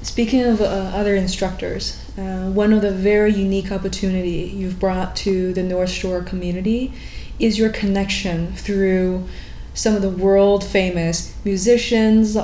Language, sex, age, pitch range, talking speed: English, female, 20-39, 180-210 Hz, 140 wpm